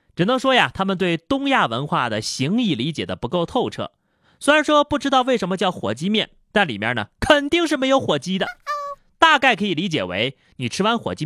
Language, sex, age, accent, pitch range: Chinese, male, 30-49, native, 145-235 Hz